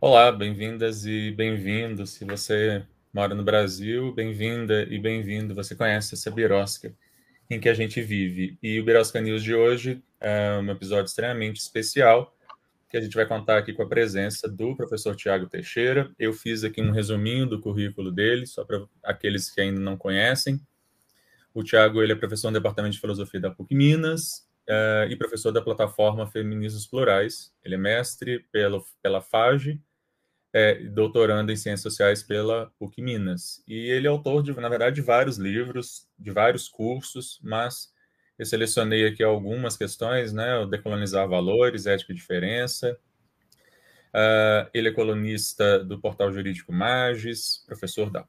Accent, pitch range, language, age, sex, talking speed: Brazilian, 105-120 Hz, Portuguese, 20-39, male, 160 wpm